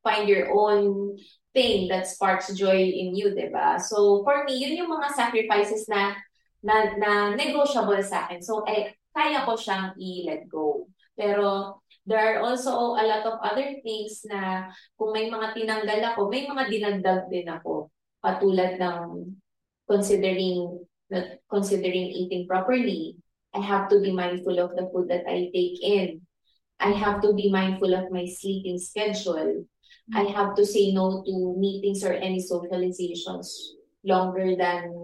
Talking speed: 160 wpm